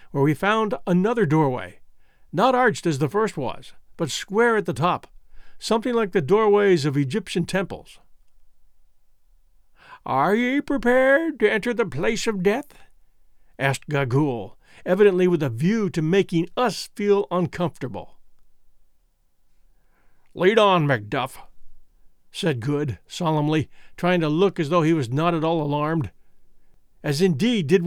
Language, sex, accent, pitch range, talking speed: English, male, American, 145-200 Hz, 135 wpm